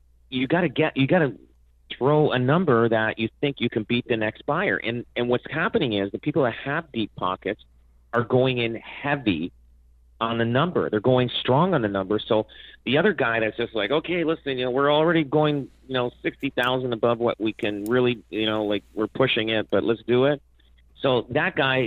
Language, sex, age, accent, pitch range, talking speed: English, male, 40-59, American, 105-130 Hz, 210 wpm